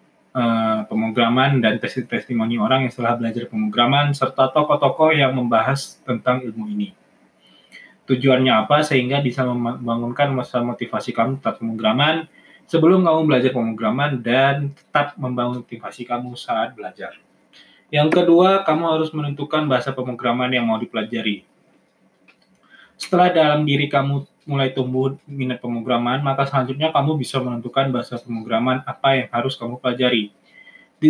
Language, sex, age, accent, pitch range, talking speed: Indonesian, male, 20-39, native, 120-140 Hz, 130 wpm